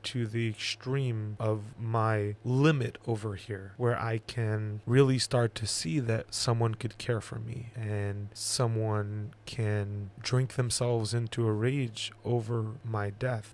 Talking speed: 140 wpm